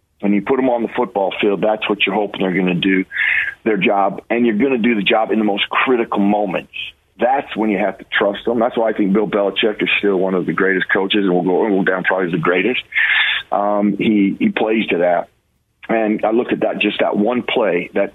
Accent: American